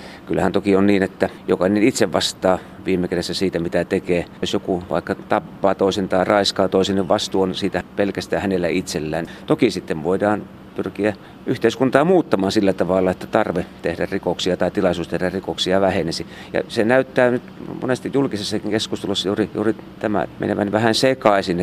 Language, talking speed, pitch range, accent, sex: Finnish, 160 wpm, 90-110 Hz, native, male